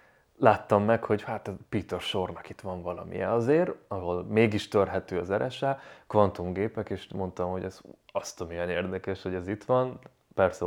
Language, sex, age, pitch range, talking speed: Hungarian, male, 30-49, 90-110 Hz, 170 wpm